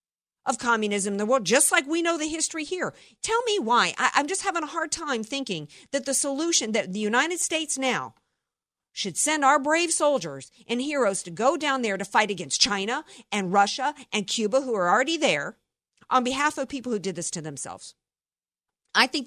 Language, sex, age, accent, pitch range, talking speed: English, female, 50-69, American, 195-260 Hz, 200 wpm